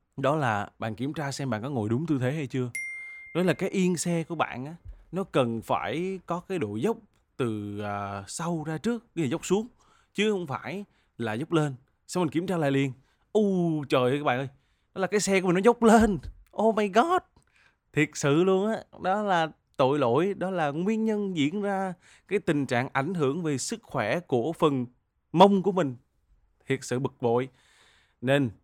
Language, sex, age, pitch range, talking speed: Vietnamese, male, 20-39, 120-180 Hz, 210 wpm